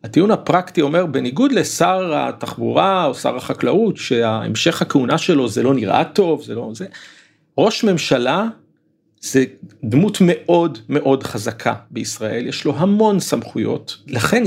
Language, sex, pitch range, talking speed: Hebrew, male, 135-195 Hz, 135 wpm